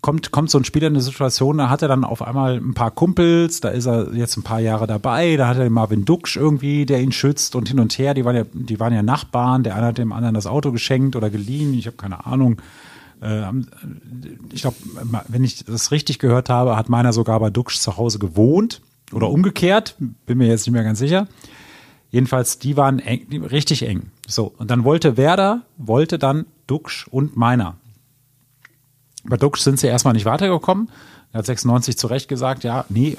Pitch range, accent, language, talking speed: 115-140 Hz, German, German, 210 wpm